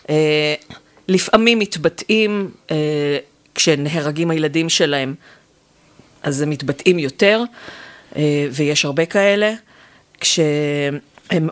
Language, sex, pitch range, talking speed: Hebrew, female, 150-195 Hz, 85 wpm